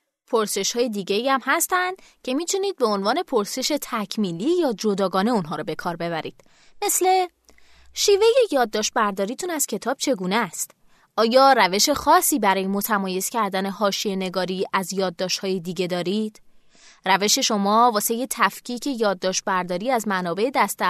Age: 20-39